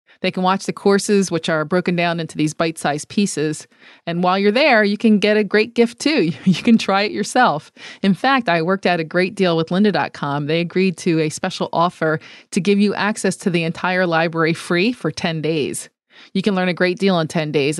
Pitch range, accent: 165-210 Hz, American